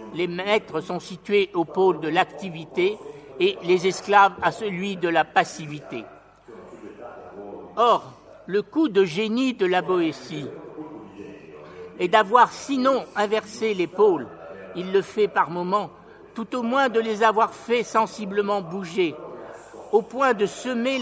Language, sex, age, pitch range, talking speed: Italian, male, 60-79, 175-220 Hz, 135 wpm